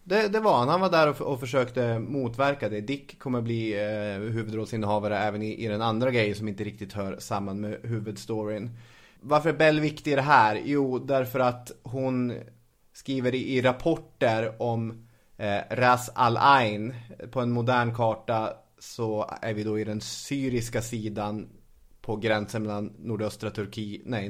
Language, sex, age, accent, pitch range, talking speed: English, male, 30-49, Swedish, 105-120 Hz, 170 wpm